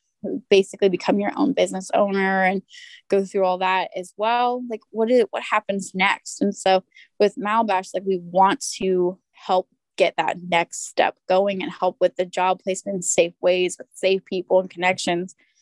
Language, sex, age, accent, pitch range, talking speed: English, female, 10-29, American, 185-210 Hz, 180 wpm